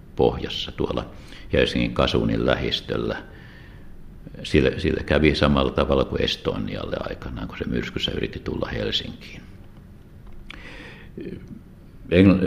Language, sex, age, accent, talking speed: Finnish, male, 60-79, native, 95 wpm